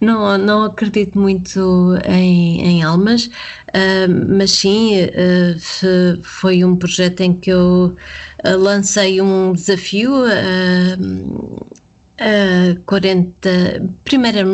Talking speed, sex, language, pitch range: 80 wpm, female, Portuguese, 175-200 Hz